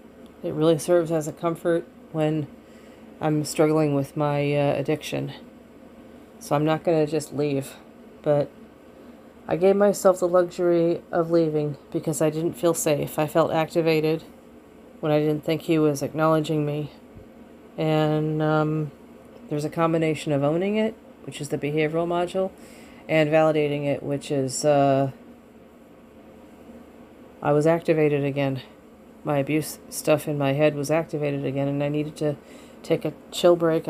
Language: English